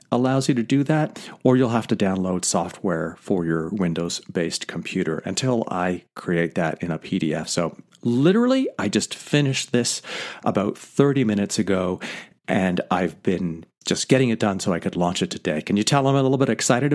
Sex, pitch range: male, 100-135 Hz